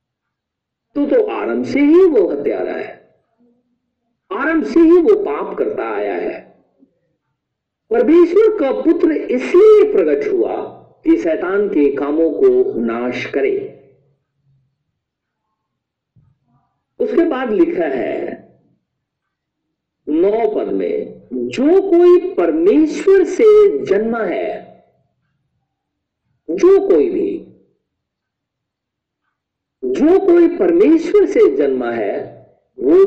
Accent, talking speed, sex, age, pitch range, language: native, 90 wpm, male, 50-69, 245-415 Hz, Hindi